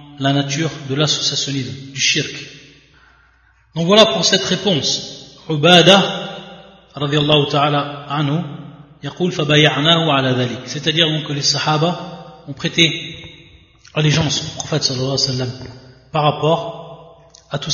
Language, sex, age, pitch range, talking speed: French, male, 30-49, 140-180 Hz, 100 wpm